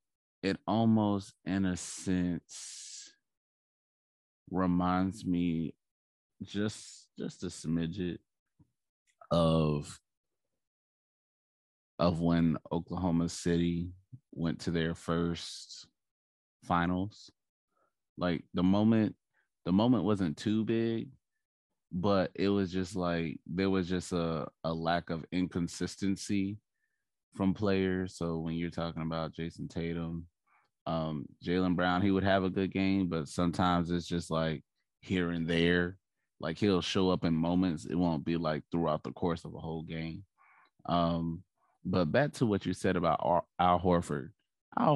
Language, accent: English, American